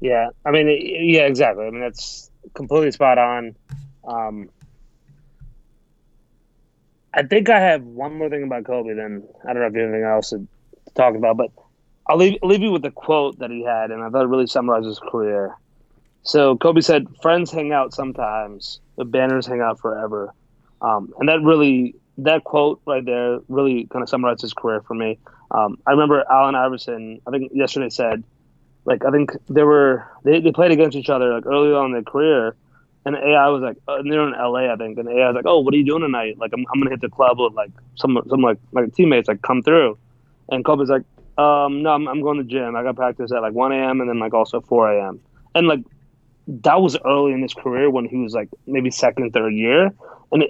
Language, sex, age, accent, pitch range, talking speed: English, male, 20-39, American, 120-145 Hz, 220 wpm